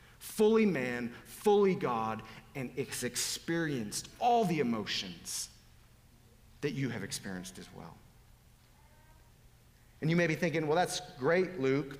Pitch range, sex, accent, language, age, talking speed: 120-165 Hz, male, American, English, 40-59, 125 wpm